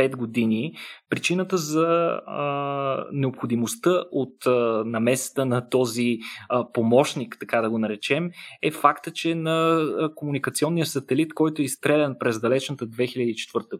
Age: 20-39